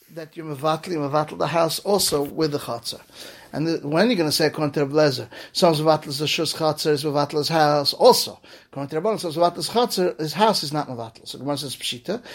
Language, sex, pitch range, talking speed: English, male, 150-180 Hz, 205 wpm